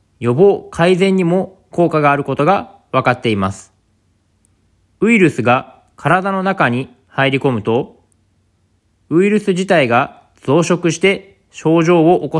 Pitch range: 120-175 Hz